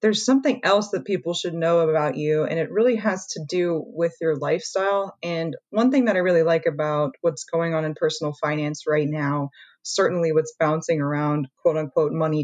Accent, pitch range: American, 150-200 Hz